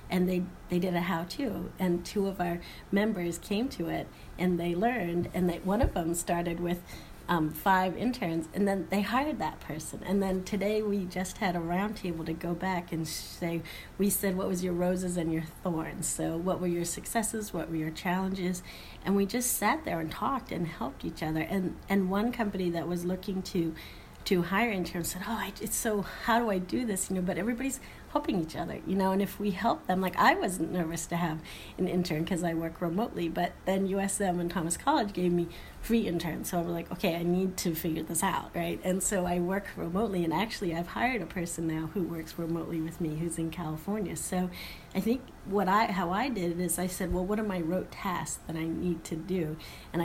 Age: 40-59